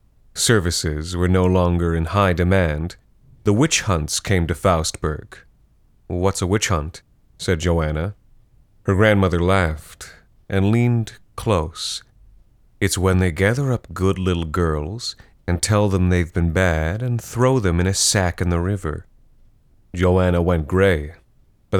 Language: English